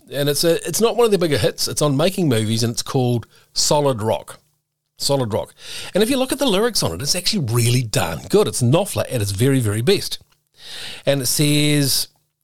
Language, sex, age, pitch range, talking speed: English, male, 40-59, 120-155 Hz, 215 wpm